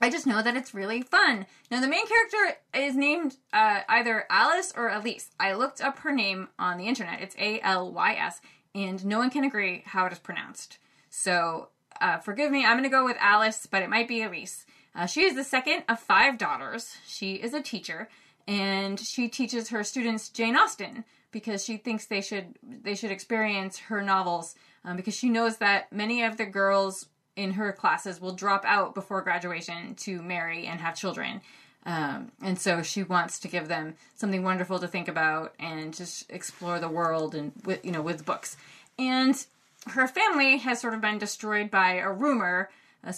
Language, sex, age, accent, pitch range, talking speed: English, female, 20-39, American, 185-240 Hz, 195 wpm